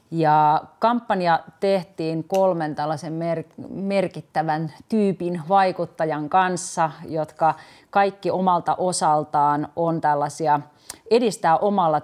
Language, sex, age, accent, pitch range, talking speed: Finnish, female, 30-49, native, 150-175 Hz, 85 wpm